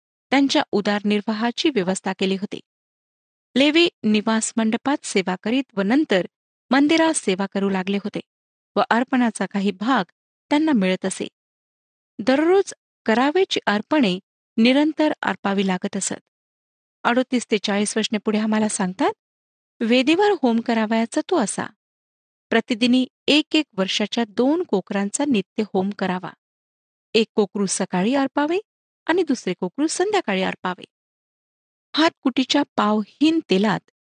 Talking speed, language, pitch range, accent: 115 wpm, Marathi, 200-285 Hz, native